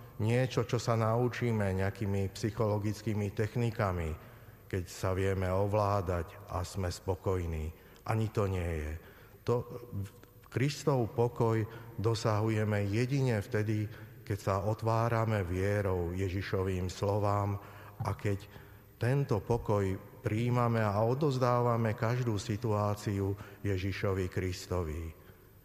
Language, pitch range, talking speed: Slovak, 95-115 Hz, 95 wpm